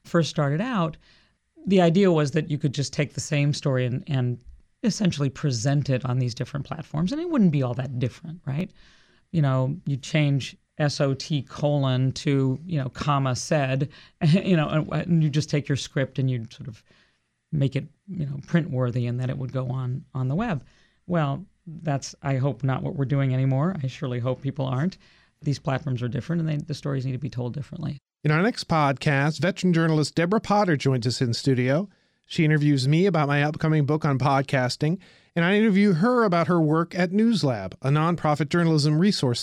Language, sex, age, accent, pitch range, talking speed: English, male, 40-59, American, 135-170 Hz, 200 wpm